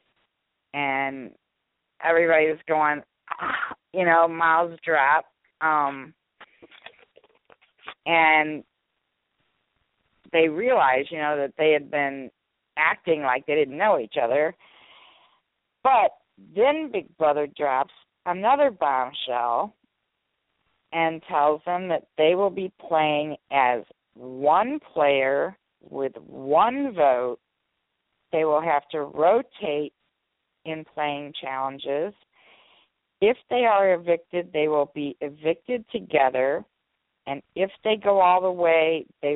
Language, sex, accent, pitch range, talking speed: English, female, American, 140-165 Hz, 110 wpm